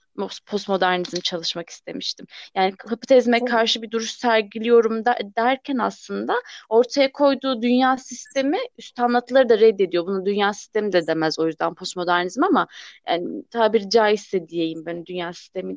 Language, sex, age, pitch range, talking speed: Turkish, female, 30-49, 195-270 Hz, 135 wpm